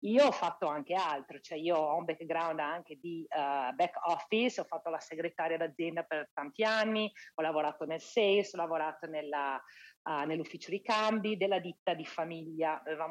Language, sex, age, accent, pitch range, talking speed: Italian, female, 40-59, native, 165-215 Hz, 175 wpm